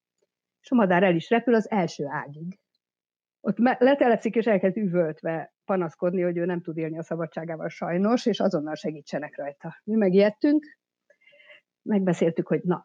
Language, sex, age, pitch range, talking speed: Hungarian, female, 50-69, 160-215 Hz, 140 wpm